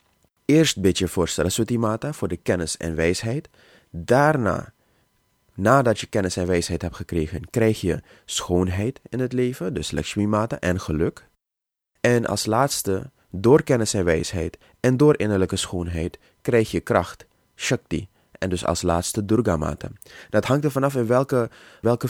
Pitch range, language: 90-120 Hz, Dutch